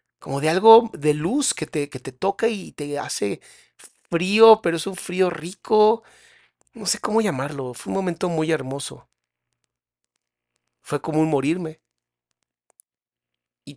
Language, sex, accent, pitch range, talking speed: Spanish, male, Mexican, 125-195 Hz, 140 wpm